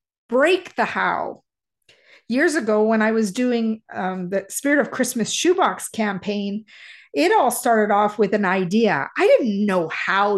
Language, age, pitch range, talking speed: English, 50-69, 215-265 Hz, 155 wpm